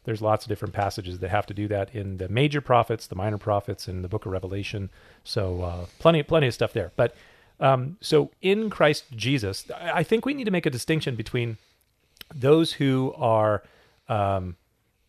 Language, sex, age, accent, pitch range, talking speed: English, male, 40-59, American, 100-130 Hz, 190 wpm